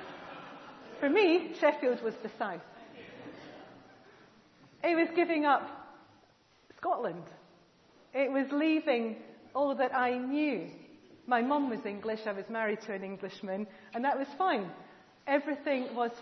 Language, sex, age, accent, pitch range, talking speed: English, female, 40-59, British, 200-260 Hz, 125 wpm